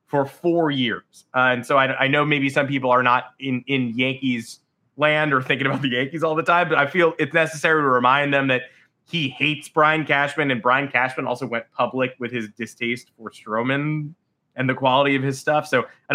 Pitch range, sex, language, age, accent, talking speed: 125-160 Hz, male, English, 20-39, American, 215 wpm